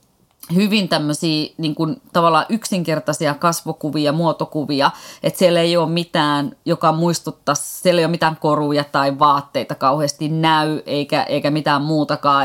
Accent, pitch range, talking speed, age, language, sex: native, 150-190 Hz, 125 wpm, 30-49, Finnish, female